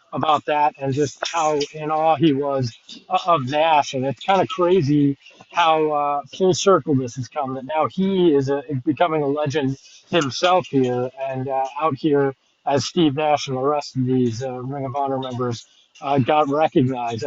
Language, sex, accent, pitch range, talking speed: English, male, American, 140-175 Hz, 185 wpm